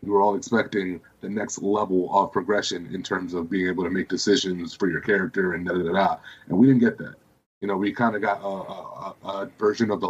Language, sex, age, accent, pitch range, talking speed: English, male, 30-49, American, 95-115 Hz, 255 wpm